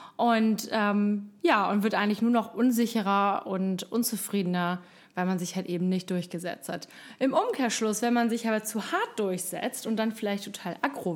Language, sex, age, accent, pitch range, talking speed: German, female, 20-39, German, 195-240 Hz, 175 wpm